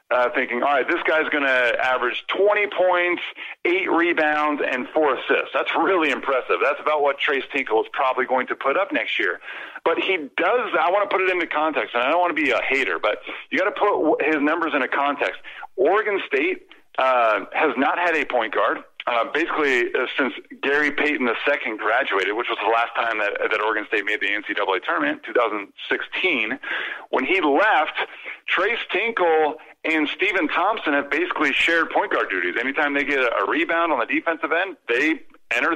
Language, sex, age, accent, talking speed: English, male, 50-69, American, 200 wpm